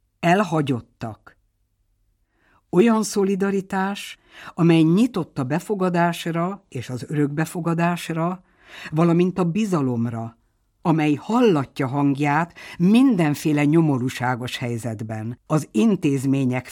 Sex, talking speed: female, 75 wpm